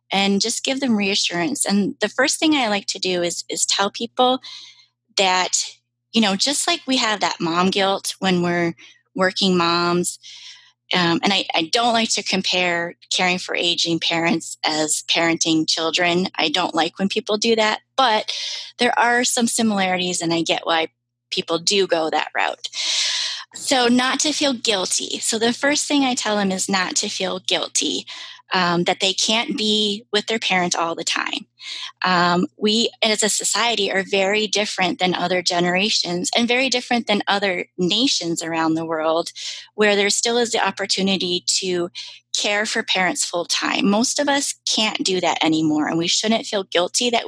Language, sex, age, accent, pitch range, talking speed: English, female, 20-39, American, 175-230 Hz, 180 wpm